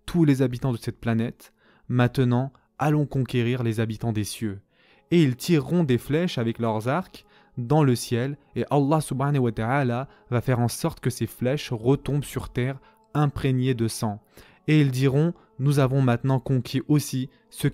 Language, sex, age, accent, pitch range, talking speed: French, male, 20-39, French, 120-150 Hz, 170 wpm